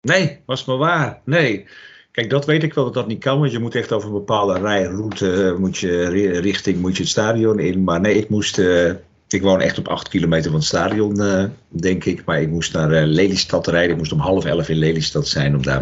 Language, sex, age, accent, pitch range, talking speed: English, male, 50-69, Dutch, 85-130 Hz, 225 wpm